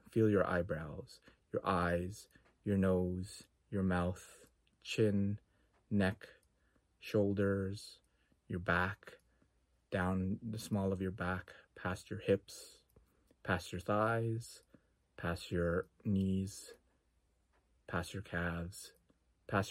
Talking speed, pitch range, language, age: 100 wpm, 85-110 Hz, English, 30-49